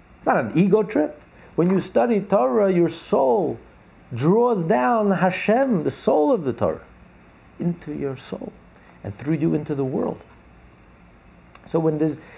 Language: English